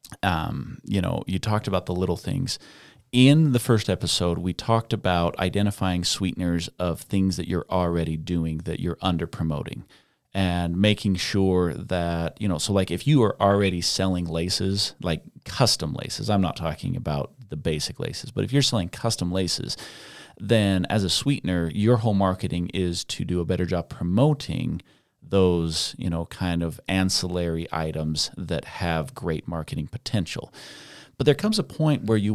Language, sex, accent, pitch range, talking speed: English, male, American, 90-115 Hz, 170 wpm